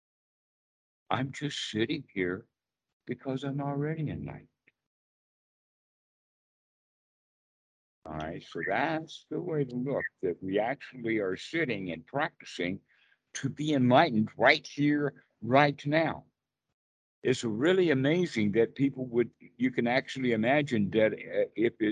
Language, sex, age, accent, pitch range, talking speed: English, male, 60-79, American, 115-145 Hz, 115 wpm